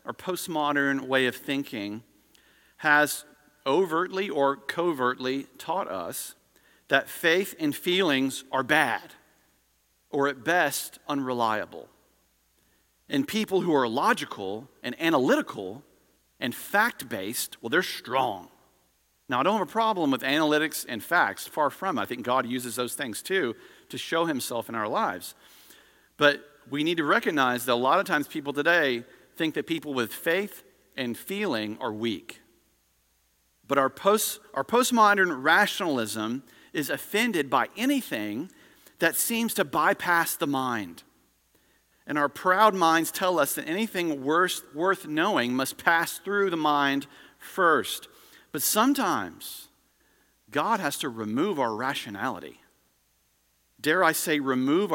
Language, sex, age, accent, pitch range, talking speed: English, male, 40-59, American, 115-170 Hz, 135 wpm